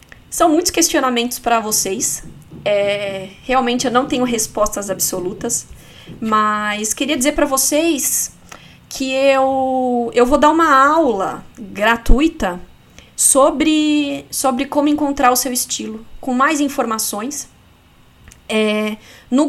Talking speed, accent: 115 wpm, Brazilian